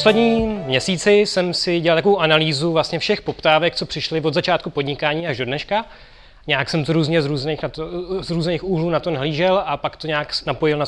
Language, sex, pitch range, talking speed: Czech, male, 135-170 Hz, 210 wpm